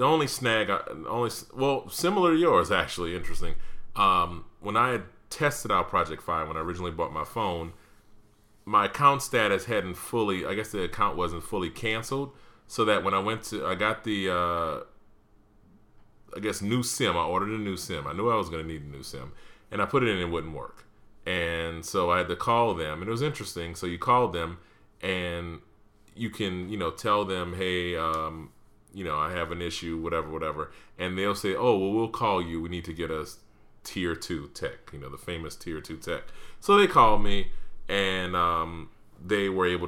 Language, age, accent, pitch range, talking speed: English, 30-49, American, 85-105 Hz, 210 wpm